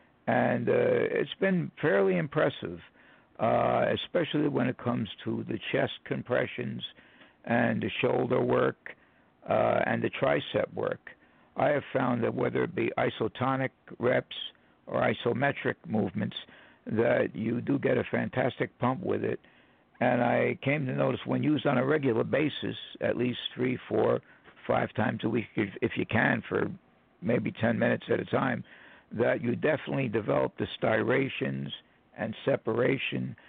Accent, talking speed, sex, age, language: American, 150 wpm, male, 60-79, English